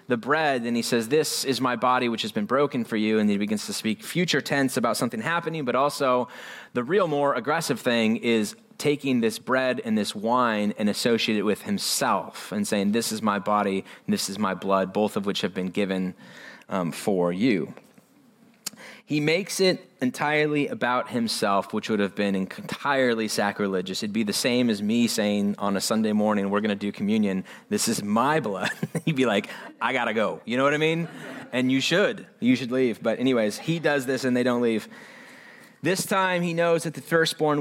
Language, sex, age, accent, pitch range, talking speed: English, male, 20-39, American, 110-165 Hz, 205 wpm